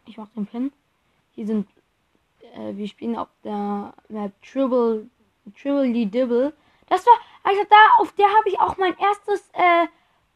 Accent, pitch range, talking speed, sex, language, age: German, 215-275 Hz, 160 wpm, female, German, 20-39